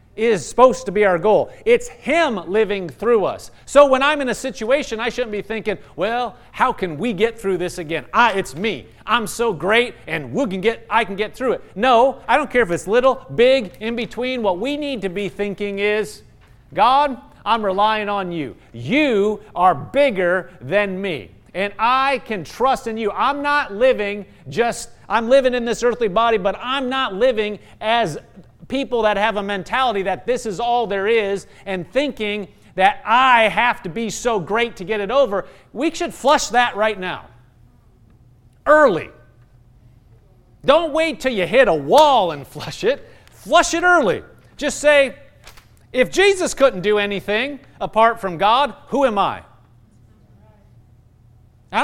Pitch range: 180-260 Hz